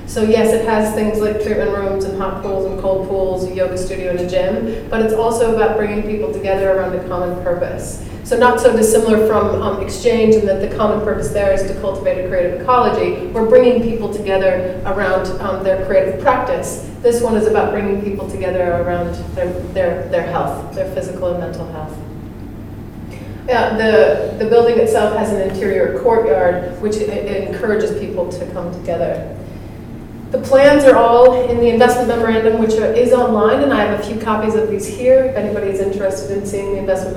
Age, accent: 30-49, American